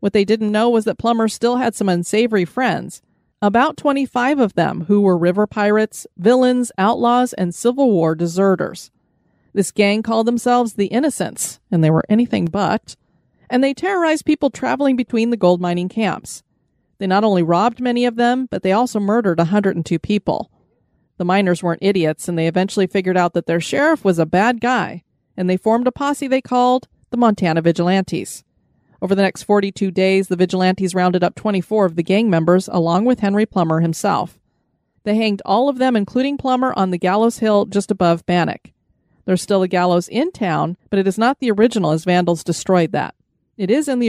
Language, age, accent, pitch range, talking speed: English, 30-49, American, 180-235 Hz, 190 wpm